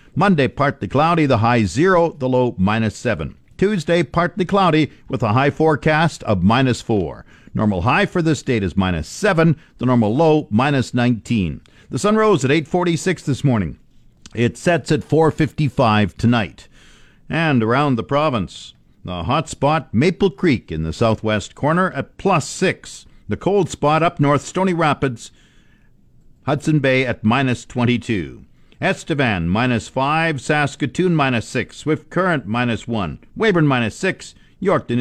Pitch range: 115-155 Hz